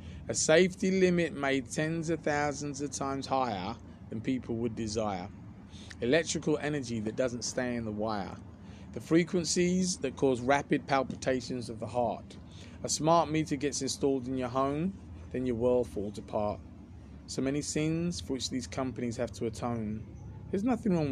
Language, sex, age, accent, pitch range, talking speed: English, male, 20-39, British, 105-145 Hz, 160 wpm